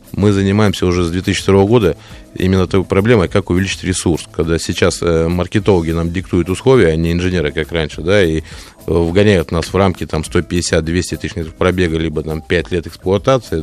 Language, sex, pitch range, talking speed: Russian, male, 80-100 Hz, 170 wpm